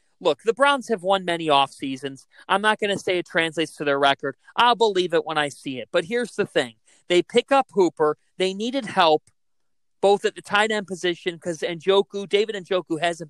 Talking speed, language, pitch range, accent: 205 wpm, English, 155-225 Hz, American